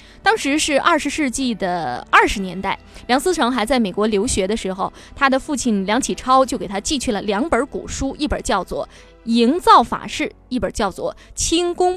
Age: 20-39